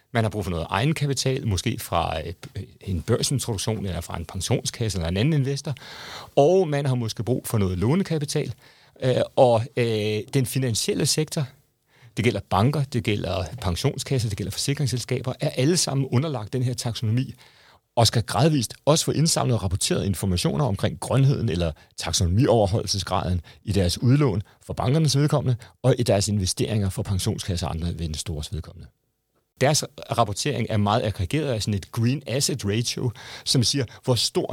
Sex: male